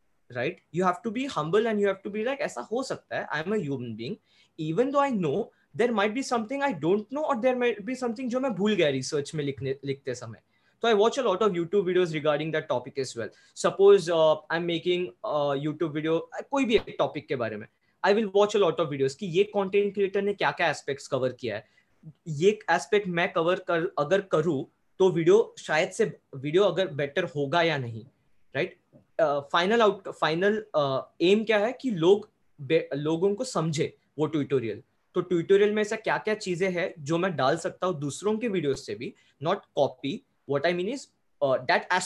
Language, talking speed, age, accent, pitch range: Hindi, 205 wpm, 20-39, native, 140-205 Hz